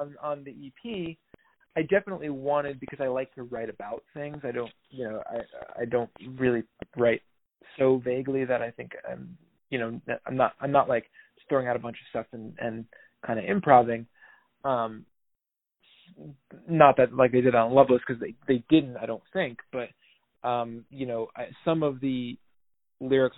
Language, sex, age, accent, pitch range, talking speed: English, male, 20-39, American, 120-140 Hz, 175 wpm